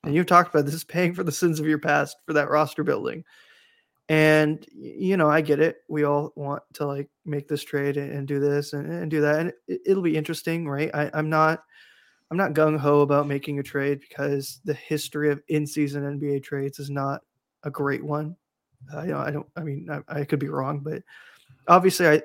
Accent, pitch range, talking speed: American, 145-165 Hz, 215 wpm